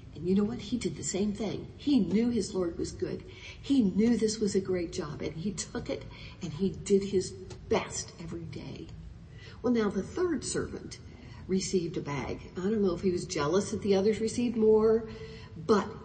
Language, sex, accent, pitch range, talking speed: English, female, American, 185-240 Hz, 200 wpm